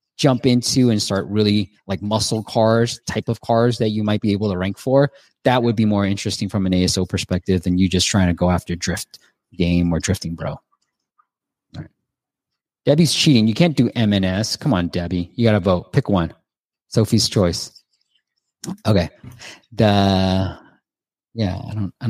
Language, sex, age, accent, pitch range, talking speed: English, male, 20-39, American, 95-130 Hz, 175 wpm